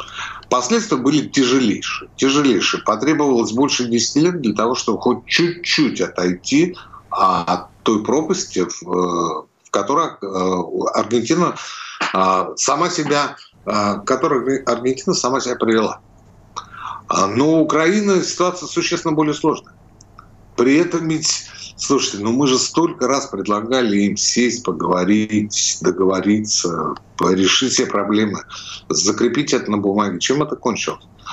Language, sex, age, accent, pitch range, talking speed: Russian, male, 60-79, native, 100-145 Hz, 105 wpm